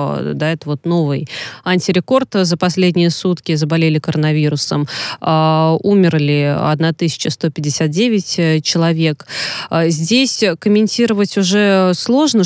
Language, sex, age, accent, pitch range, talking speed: Russian, female, 20-39, native, 155-190 Hz, 70 wpm